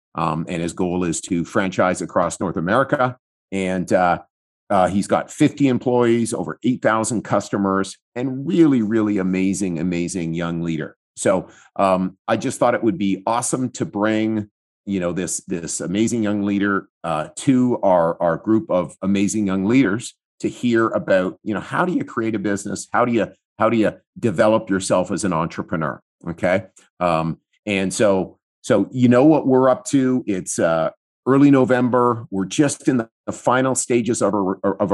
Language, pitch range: English, 95-120 Hz